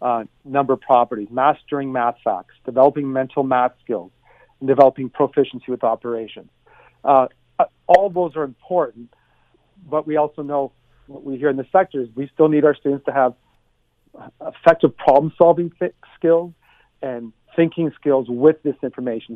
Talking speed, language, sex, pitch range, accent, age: 150 wpm, English, male, 125-155 Hz, American, 40-59